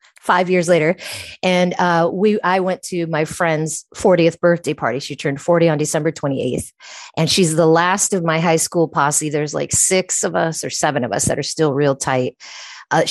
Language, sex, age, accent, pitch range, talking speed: English, female, 30-49, American, 155-195 Hz, 200 wpm